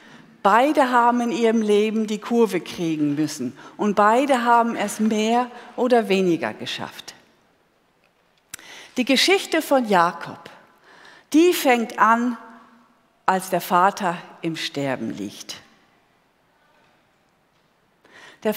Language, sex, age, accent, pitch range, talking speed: German, female, 50-69, German, 170-245 Hz, 100 wpm